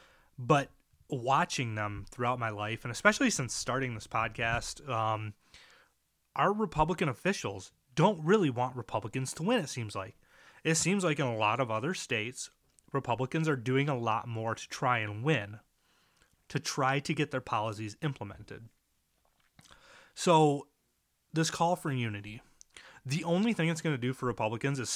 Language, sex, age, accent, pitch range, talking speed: English, male, 30-49, American, 115-145 Hz, 160 wpm